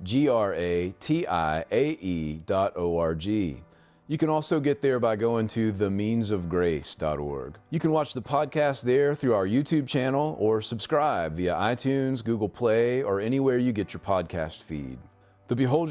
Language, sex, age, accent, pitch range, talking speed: English, male, 30-49, American, 100-140 Hz, 135 wpm